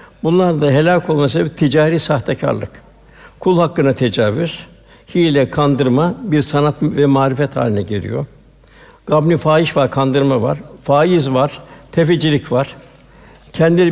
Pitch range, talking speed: 140-165 Hz, 120 wpm